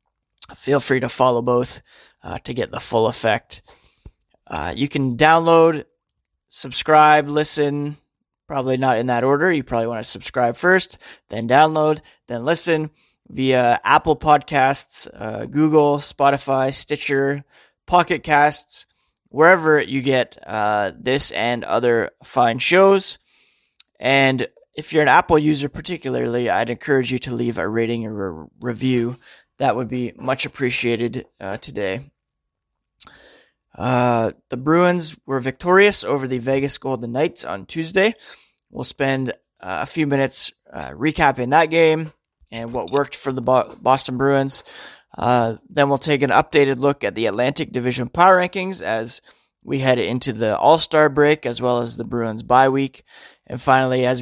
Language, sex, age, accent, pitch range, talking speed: English, male, 20-39, American, 125-150 Hz, 145 wpm